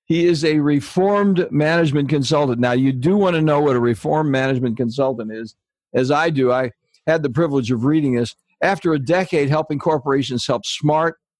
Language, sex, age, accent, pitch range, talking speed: English, male, 60-79, American, 130-160 Hz, 185 wpm